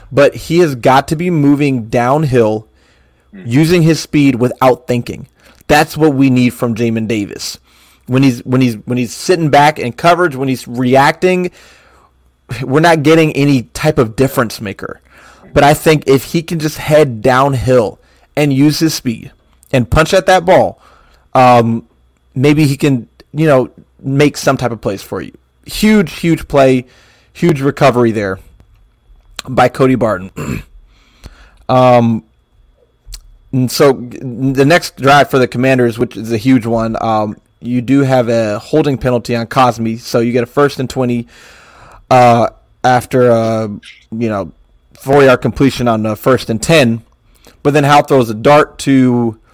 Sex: male